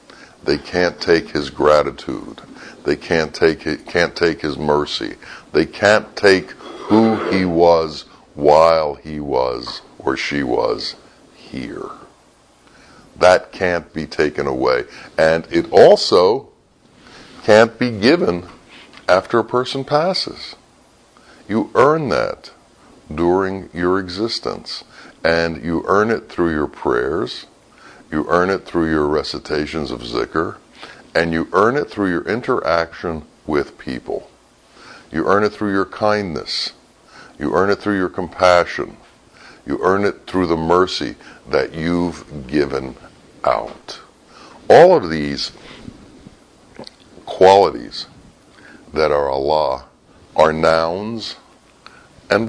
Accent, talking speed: American, 115 wpm